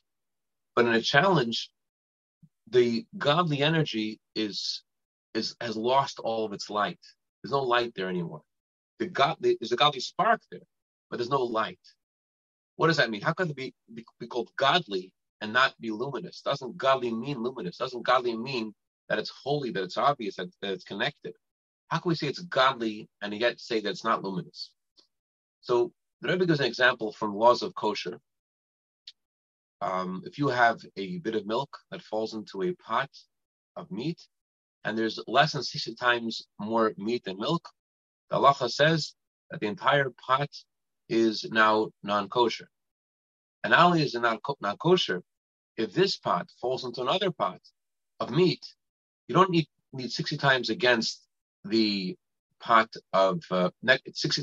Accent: American